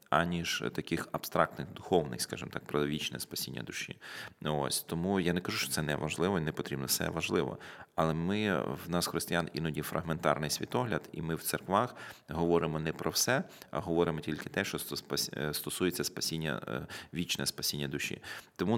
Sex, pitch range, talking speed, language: male, 70-85 Hz, 160 wpm, Ukrainian